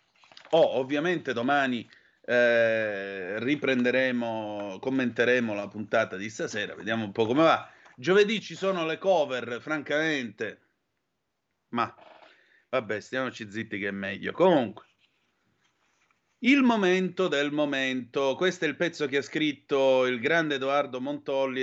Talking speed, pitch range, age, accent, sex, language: 120 wpm, 115-160 Hz, 30-49, native, male, Italian